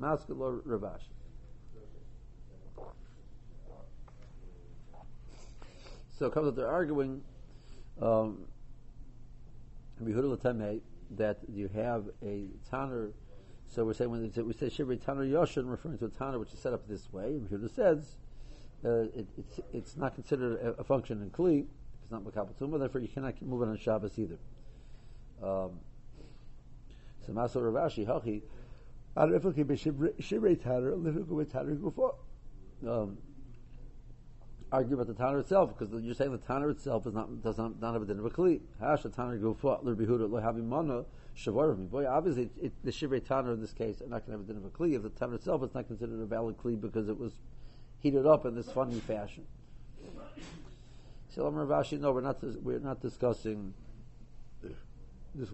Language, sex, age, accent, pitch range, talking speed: English, male, 50-69, American, 110-135 Hz, 140 wpm